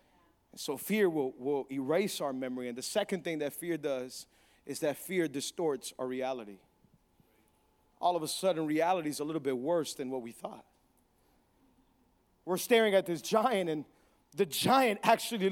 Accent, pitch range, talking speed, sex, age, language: American, 180-250 Hz, 165 wpm, male, 40-59, English